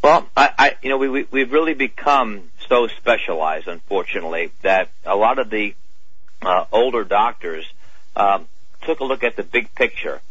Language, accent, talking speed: English, American, 170 wpm